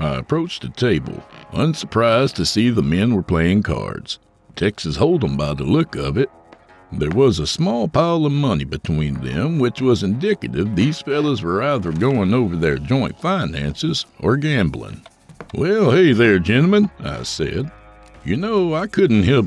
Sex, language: male, English